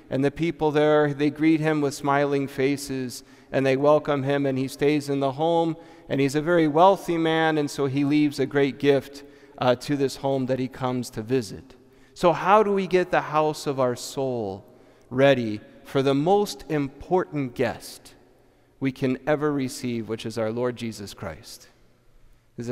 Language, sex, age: English, male, 30-49